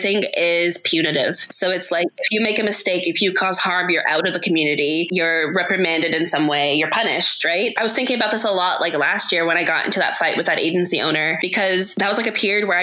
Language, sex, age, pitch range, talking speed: English, female, 20-39, 175-220 Hz, 255 wpm